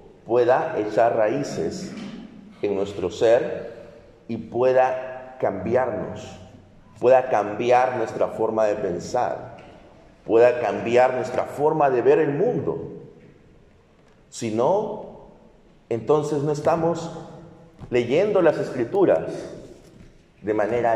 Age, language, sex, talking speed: 50-69, Spanish, male, 95 wpm